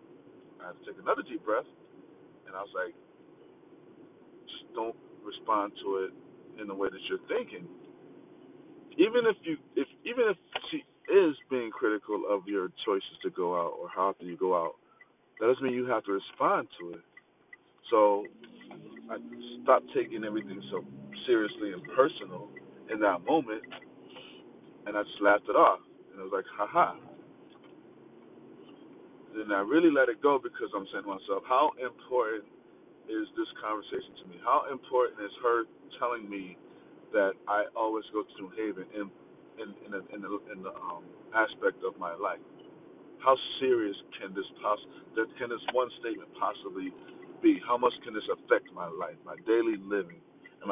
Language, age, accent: English, 40-59, American